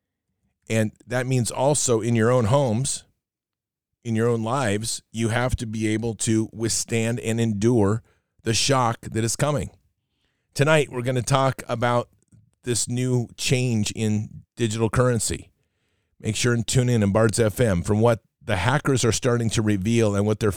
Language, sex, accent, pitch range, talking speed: English, male, American, 105-120 Hz, 165 wpm